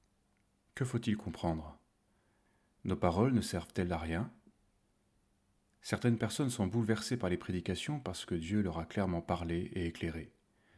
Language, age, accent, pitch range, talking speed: French, 30-49, French, 85-110 Hz, 140 wpm